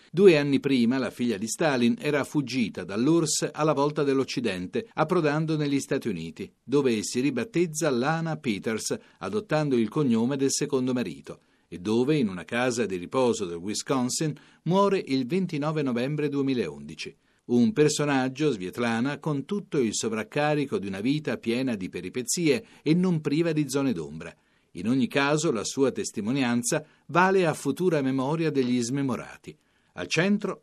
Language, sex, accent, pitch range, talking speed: Italian, male, native, 125-160 Hz, 145 wpm